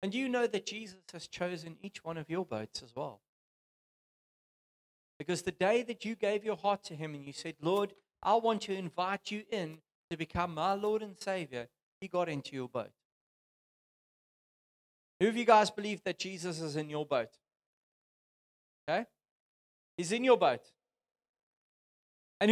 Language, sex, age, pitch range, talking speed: English, male, 40-59, 180-240 Hz, 170 wpm